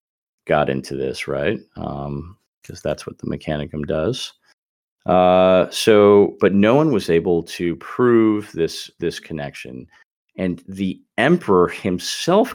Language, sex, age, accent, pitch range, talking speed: English, male, 30-49, American, 75-95 Hz, 130 wpm